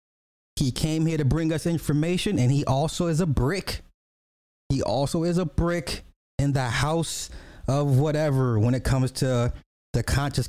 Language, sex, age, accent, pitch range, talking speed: English, male, 20-39, American, 115-170 Hz, 165 wpm